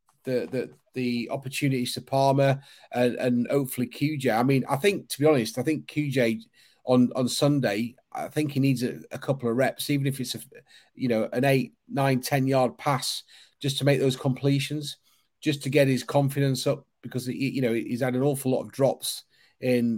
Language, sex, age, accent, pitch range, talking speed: English, male, 30-49, British, 125-140 Hz, 200 wpm